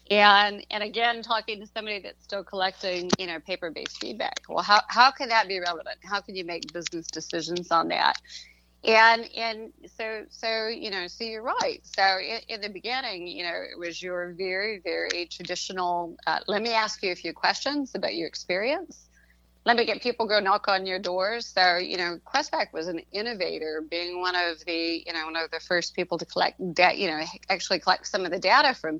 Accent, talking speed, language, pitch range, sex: American, 205 wpm, English, 170-220 Hz, female